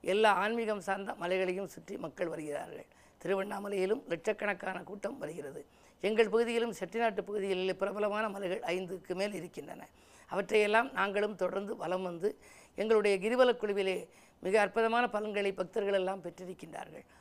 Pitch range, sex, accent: 185-225 Hz, female, native